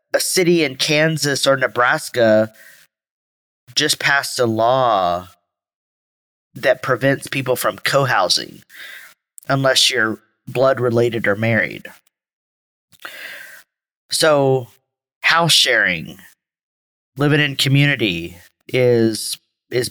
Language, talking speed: English, 85 wpm